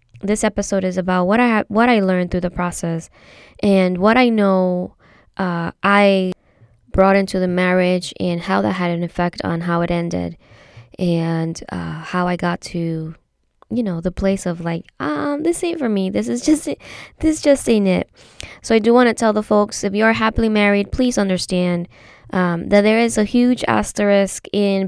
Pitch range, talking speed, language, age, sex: 180-215 Hz, 195 wpm, English, 20-39, female